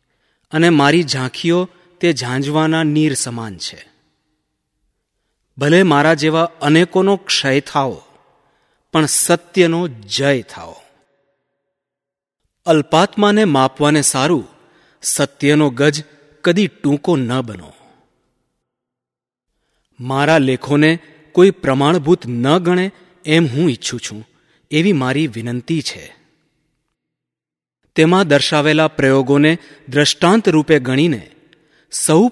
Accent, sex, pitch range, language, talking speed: native, male, 135-170 Hz, Gujarati, 80 wpm